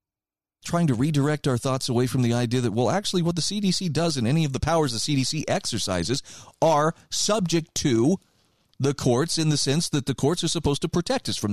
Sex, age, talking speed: male, 40-59, 215 wpm